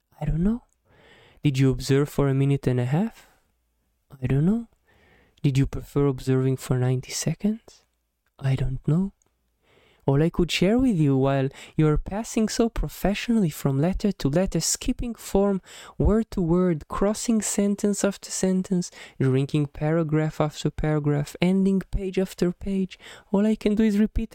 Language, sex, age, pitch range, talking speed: Hebrew, male, 20-39, 135-200 Hz, 155 wpm